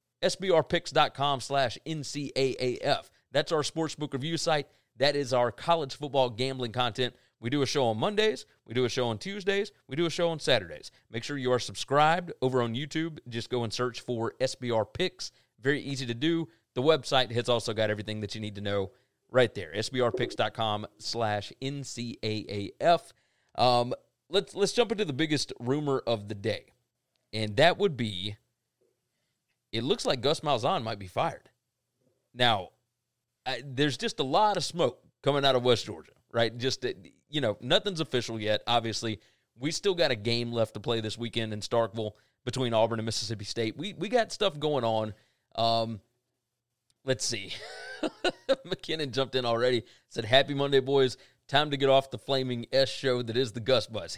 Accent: American